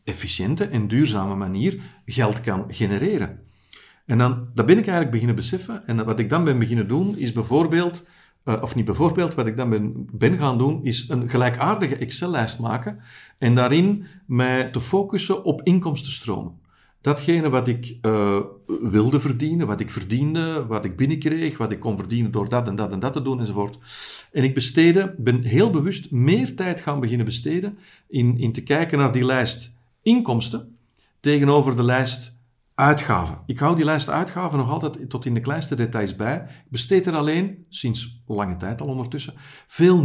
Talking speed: 175 wpm